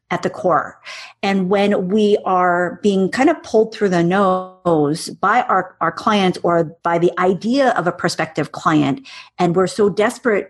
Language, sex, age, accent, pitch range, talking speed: English, female, 40-59, American, 165-195 Hz, 170 wpm